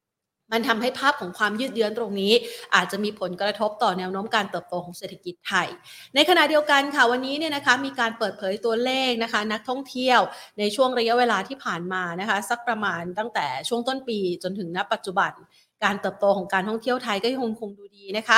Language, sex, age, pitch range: Thai, female, 30-49, 195-240 Hz